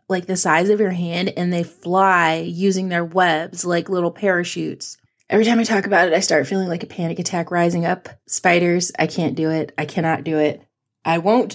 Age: 20-39